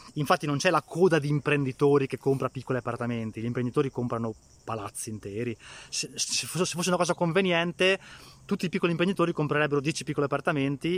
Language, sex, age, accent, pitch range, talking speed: Italian, male, 20-39, native, 125-185 Hz, 160 wpm